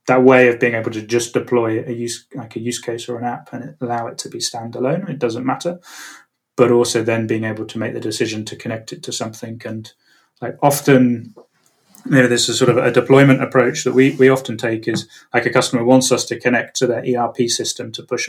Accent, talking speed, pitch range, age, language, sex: British, 235 wpm, 115-125 Hz, 30-49, English, male